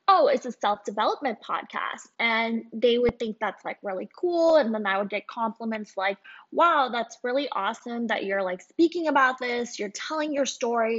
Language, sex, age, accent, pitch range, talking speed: English, female, 20-39, American, 215-280 Hz, 185 wpm